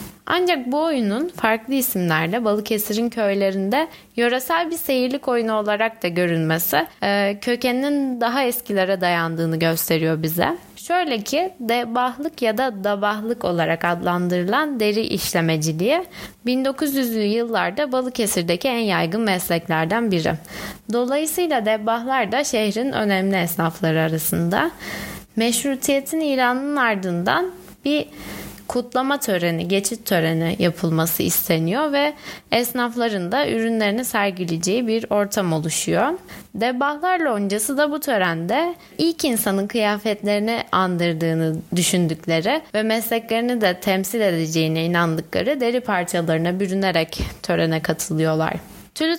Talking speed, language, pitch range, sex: 100 wpm, Turkish, 175-255 Hz, female